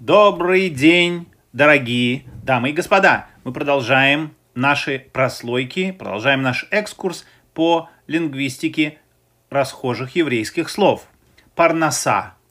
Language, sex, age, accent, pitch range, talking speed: Russian, male, 30-49, native, 125-160 Hz, 90 wpm